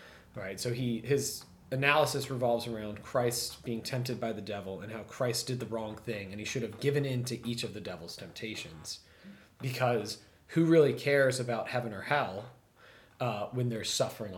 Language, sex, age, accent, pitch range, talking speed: English, male, 30-49, American, 100-125 Hz, 190 wpm